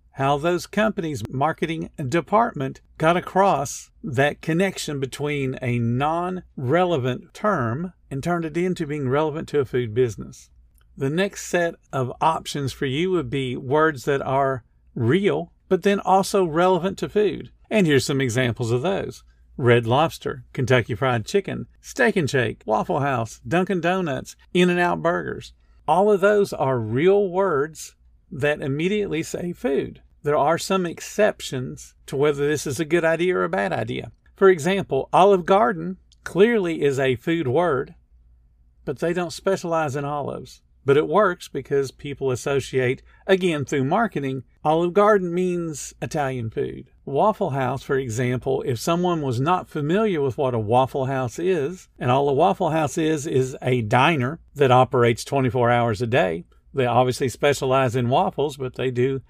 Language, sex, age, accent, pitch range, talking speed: English, male, 50-69, American, 130-175 Hz, 155 wpm